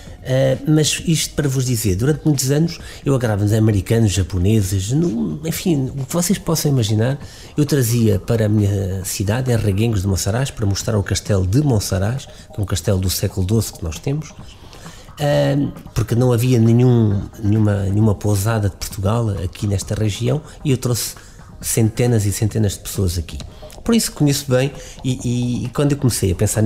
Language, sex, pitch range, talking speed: Portuguese, male, 100-135 Hz, 185 wpm